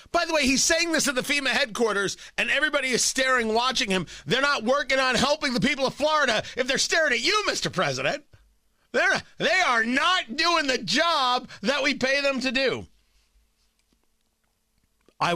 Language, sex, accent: English, male, American